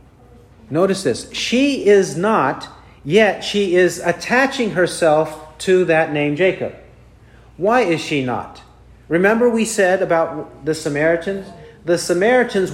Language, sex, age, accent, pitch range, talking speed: English, male, 40-59, American, 165-215 Hz, 120 wpm